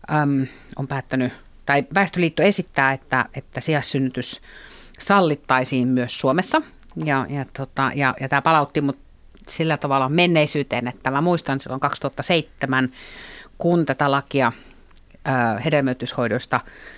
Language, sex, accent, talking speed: Finnish, female, native, 115 wpm